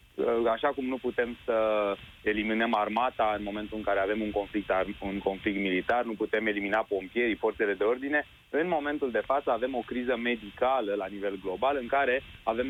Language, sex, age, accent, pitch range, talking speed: Romanian, male, 20-39, native, 105-135 Hz, 180 wpm